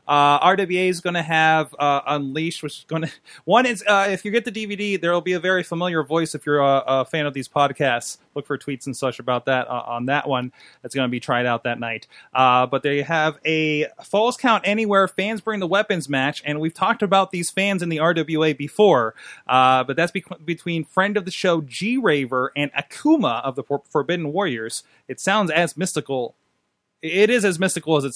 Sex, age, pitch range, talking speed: male, 30-49, 125-170 Hz, 225 wpm